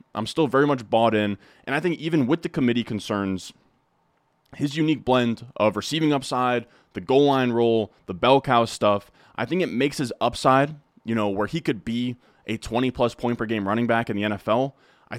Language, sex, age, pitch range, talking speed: English, male, 20-39, 100-125 Hz, 205 wpm